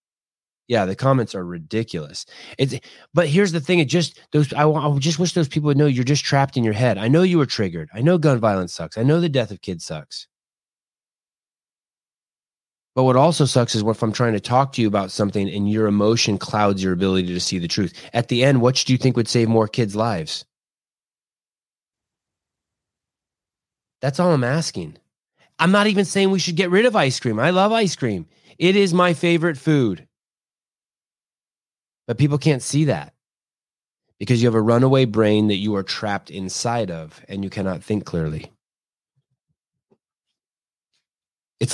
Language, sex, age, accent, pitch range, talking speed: English, male, 30-49, American, 105-145 Hz, 185 wpm